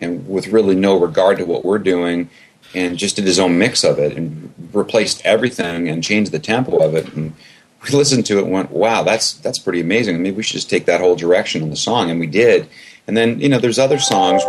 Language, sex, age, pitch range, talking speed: English, male, 30-49, 85-110 Hz, 245 wpm